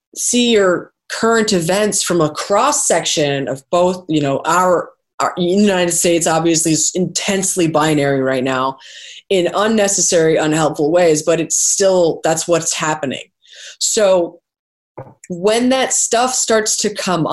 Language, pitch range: English, 165-235 Hz